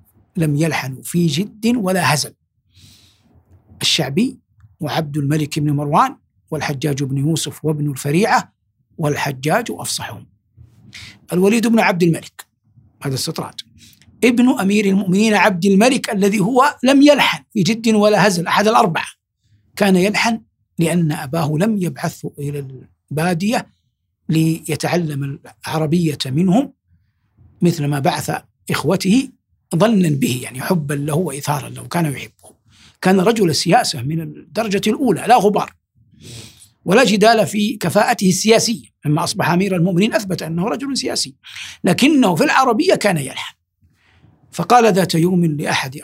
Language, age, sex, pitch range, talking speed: Arabic, 60-79, male, 120-195 Hz, 120 wpm